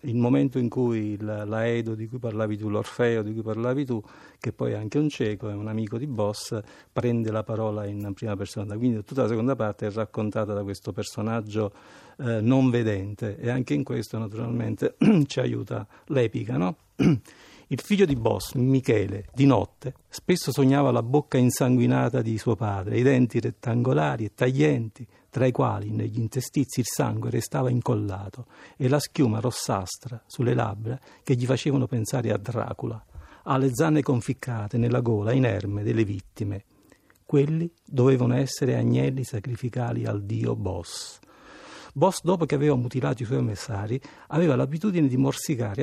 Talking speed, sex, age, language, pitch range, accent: 160 wpm, male, 50-69, Italian, 110-135 Hz, native